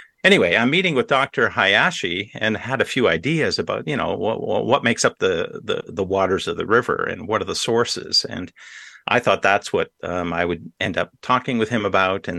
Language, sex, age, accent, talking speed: English, male, 50-69, American, 220 wpm